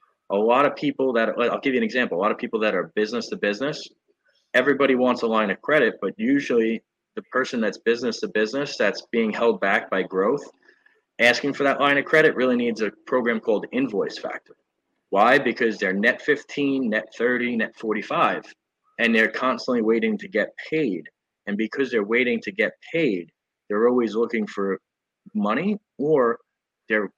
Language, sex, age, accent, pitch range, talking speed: English, male, 30-49, American, 110-140 Hz, 180 wpm